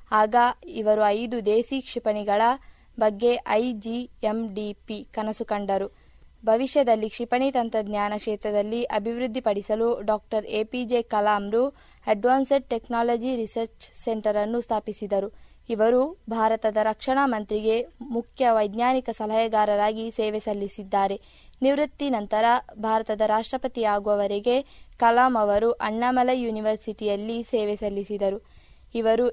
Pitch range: 215-240 Hz